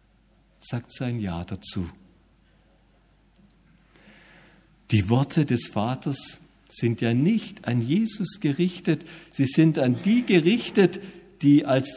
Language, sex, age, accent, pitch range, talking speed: German, male, 50-69, German, 110-165 Hz, 105 wpm